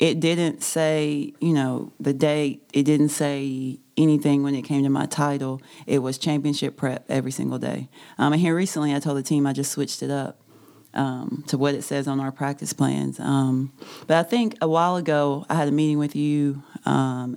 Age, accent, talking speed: 30-49, American, 205 wpm